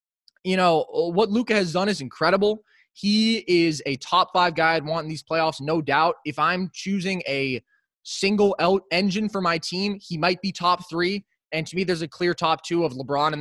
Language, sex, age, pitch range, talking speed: English, male, 20-39, 150-200 Hz, 210 wpm